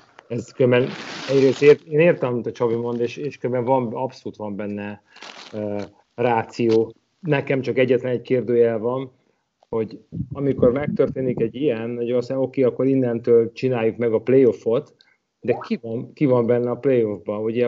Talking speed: 160 wpm